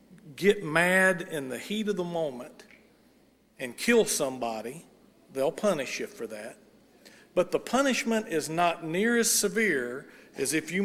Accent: American